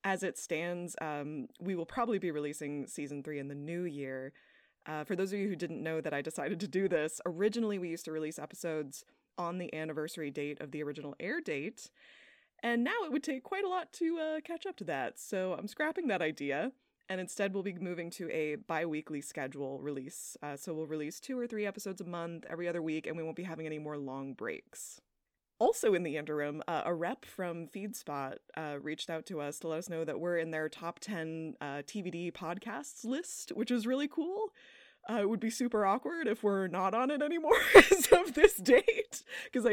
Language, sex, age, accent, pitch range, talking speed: English, female, 20-39, American, 150-215 Hz, 220 wpm